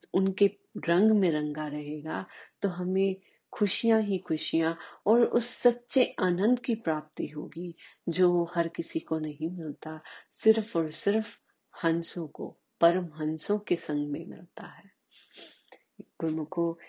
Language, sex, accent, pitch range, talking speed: Hindi, female, native, 160-200 Hz, 130 wpm